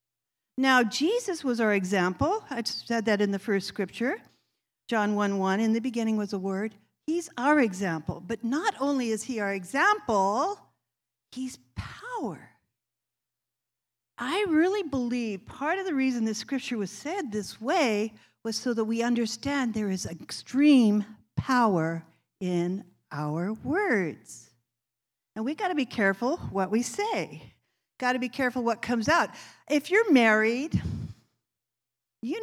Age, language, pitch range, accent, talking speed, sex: 50-69, English, 180-270 Hz, American, 150 wpm, female